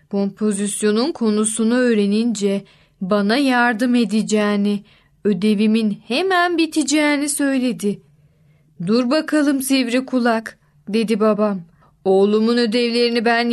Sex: female